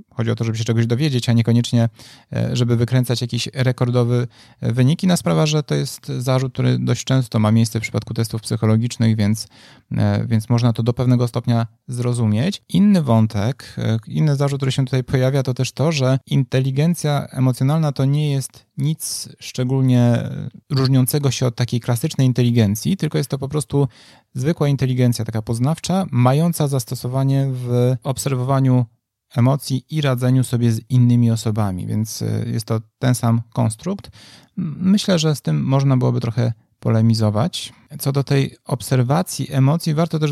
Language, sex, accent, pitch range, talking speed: Polish, male, native, 115-135 Hz, 155 wpm